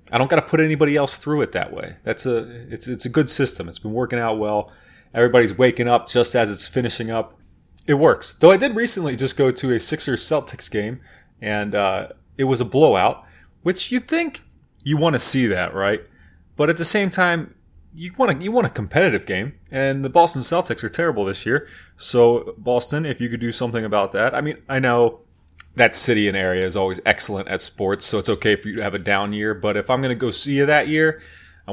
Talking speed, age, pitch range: 235 wpm, 30-49, 100-135 Hz